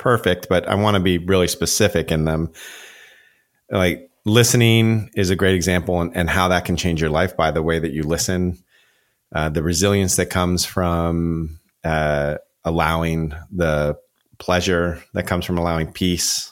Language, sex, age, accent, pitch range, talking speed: English, male, 30-49, American, 80-95 Hz, 160 wpm